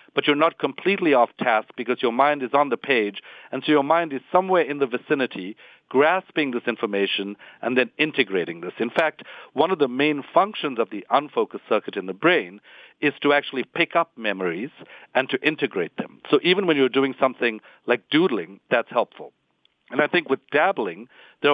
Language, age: English, 50-69